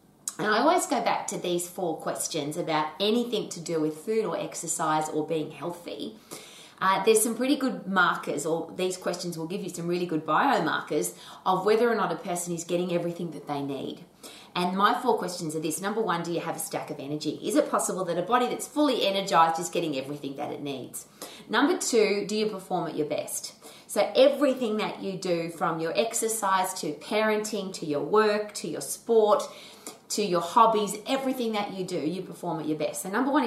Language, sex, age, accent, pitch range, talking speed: English, female, 20-39, Australian, 160-215 Hz, 210 wpm